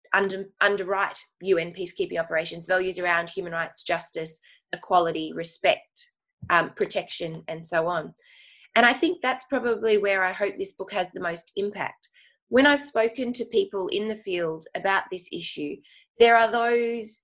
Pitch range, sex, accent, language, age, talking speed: 175-235 Hz, female, Australian, English, 20-39, 155 wpm